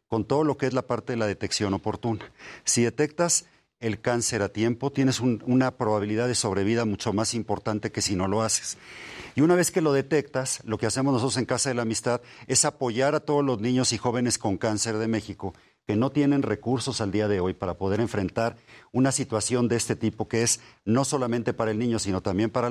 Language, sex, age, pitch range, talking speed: Spanish, male, 50-69, 105-130 Hz, 220 wpm